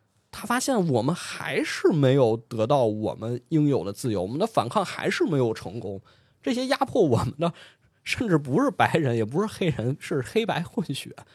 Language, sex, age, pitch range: Chinese, male, 20-39, 115-185 Hz